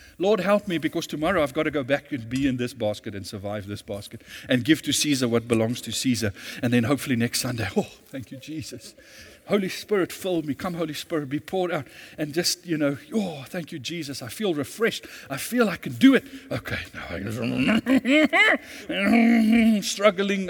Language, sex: English, male